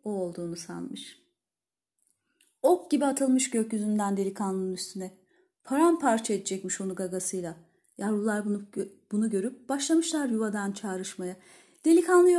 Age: 30-49